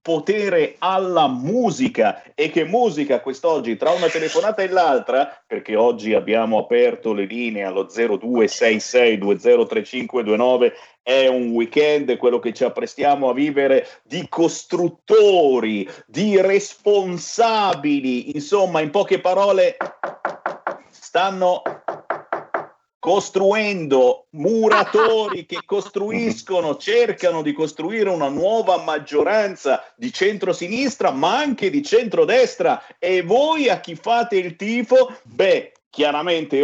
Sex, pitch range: male, 135-225 Hz